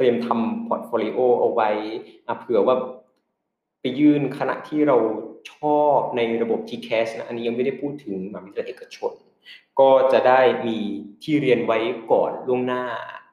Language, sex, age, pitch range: Thai, male, 20-39, 120-150 Hz